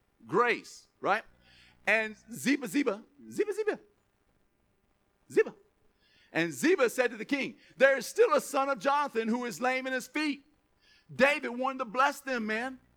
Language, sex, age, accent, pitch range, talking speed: English, male, 50-69, American, 180-265 Hz, 155 wpm